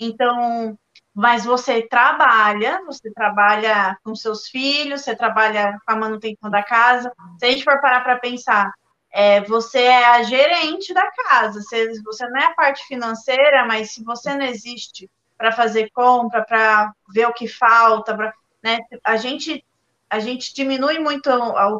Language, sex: Portuguese, female